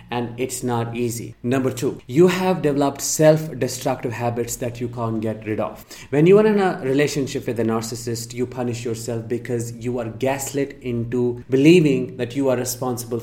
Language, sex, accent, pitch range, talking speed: English, male, Indian, 115-140 Hz, 175 wpm